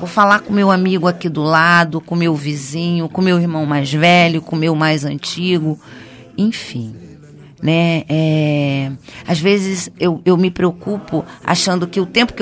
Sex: female